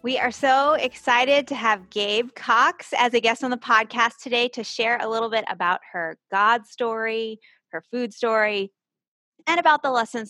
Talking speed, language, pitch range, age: 180 wpm, English, 200-260 Hz, 20-39